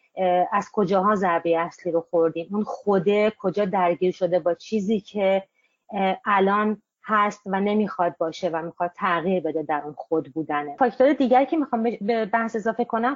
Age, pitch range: 30-49, 185-220 Hz